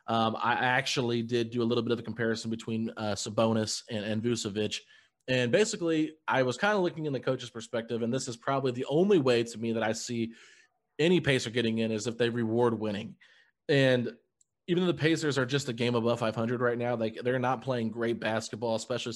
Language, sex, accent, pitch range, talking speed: English, male, American, 115-140 Hz, 215 wpm